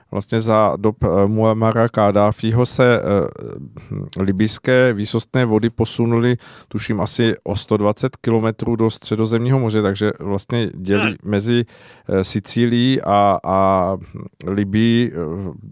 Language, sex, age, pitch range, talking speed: Czech, male, 50-69, 105-120 Hz, 115 wpm